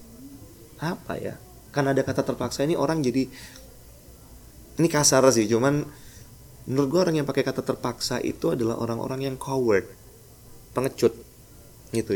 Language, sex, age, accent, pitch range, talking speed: Indonesian, male, 20-39, native, 100-130 Hz, 135 wpm